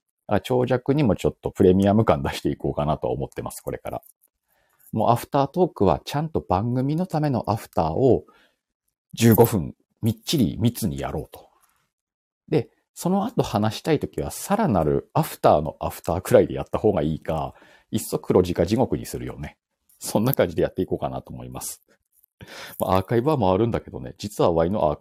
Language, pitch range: Japanese, 80-115 Hz